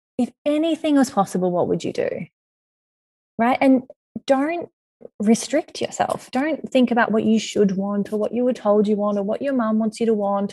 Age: 20-39